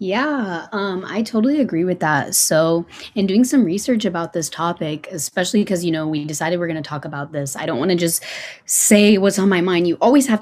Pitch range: 145-180 Hz